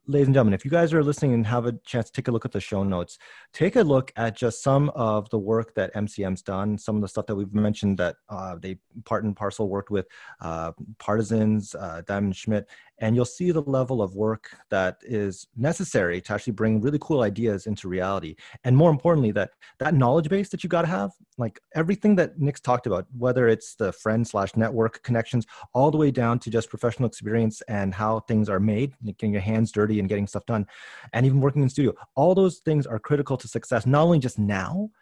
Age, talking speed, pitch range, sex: 30-49, 230 wpm, 105-135 Hz, male